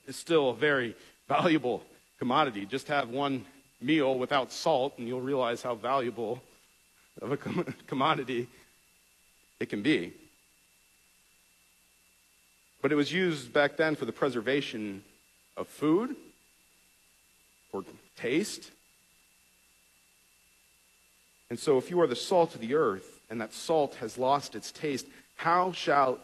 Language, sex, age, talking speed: English, male, 40-59, 125 wpm